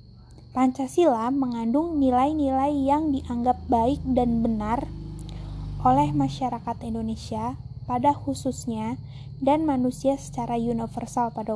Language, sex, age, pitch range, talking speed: Indonesian, female, 20-39, 225-260 Hz, 95 wpm